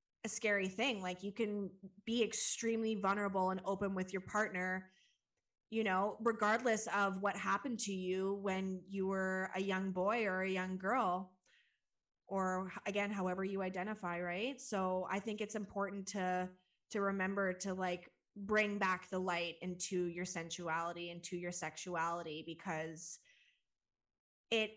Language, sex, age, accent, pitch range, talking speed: English, female, 20-39, American, 185-260 Hz, 145 wpm